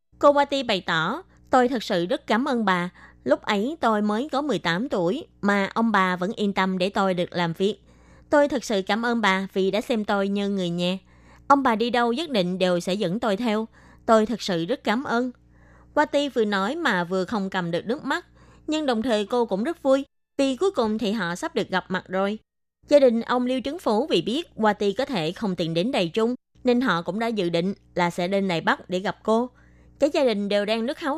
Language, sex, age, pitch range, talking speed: Vietnamese, female, 20-39, 190-250 Hz, 240 wpm